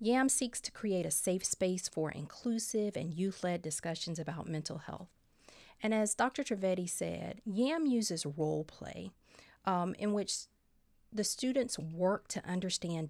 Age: 40-59